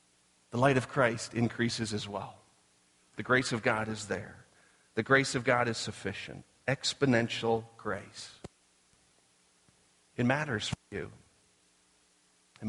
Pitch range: 95-130 Hz